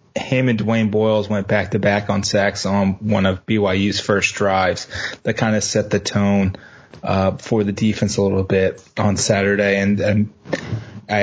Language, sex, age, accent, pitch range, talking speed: English, male, 20-39, American, 100-110 Hz, 170 wpm